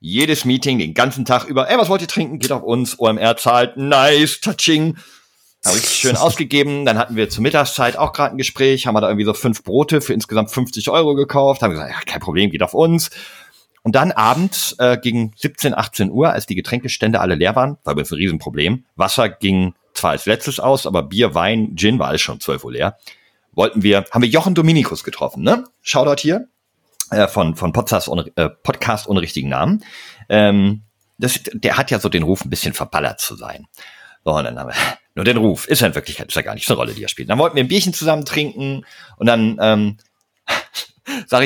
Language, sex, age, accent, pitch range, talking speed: German, male, 40-59, German, 105-145 Hz, 210 wpm